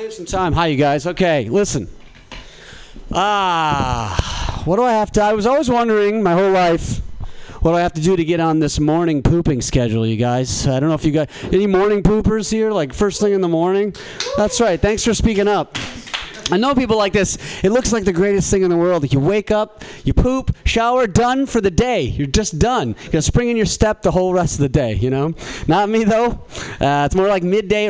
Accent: American